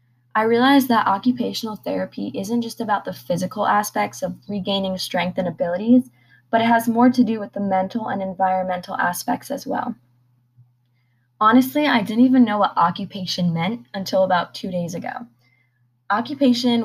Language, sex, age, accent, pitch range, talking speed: English, female, 20-39, American, 180-230 Hz, 155 wpm